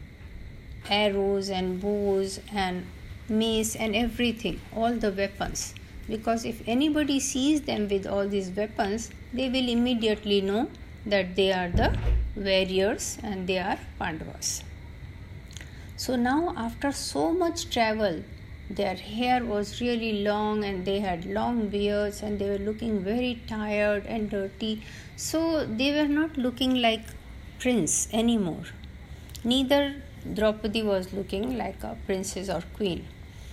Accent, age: native, 50-69